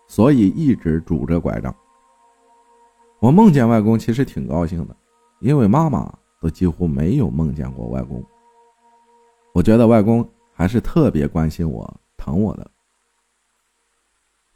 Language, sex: Chinese, male